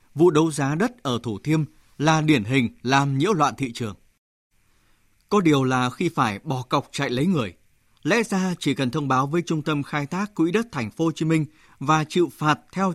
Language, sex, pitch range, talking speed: Vietnamese, male, 115-160 Hz, 220 wpm